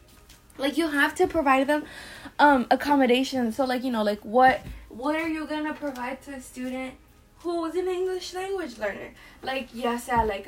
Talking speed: 185 wpm